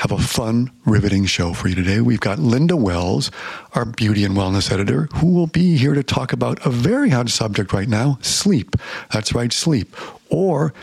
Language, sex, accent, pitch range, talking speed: English, male, American, 105-130 Hz, 195 wpm